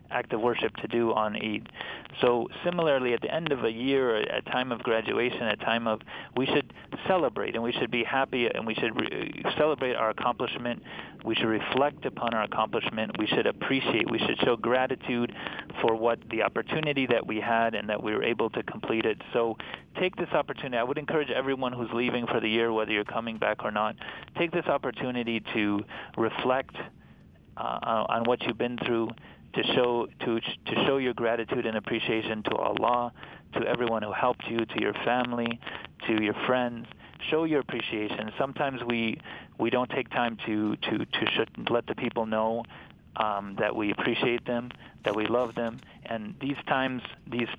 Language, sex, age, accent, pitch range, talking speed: English, male, 40-59, American, 110-130 Hz, 185 wpm